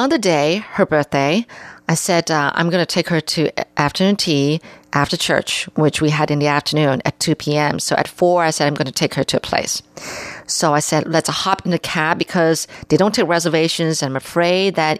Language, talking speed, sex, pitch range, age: English, 225 wpm, female, 155-210 Hz, 40-59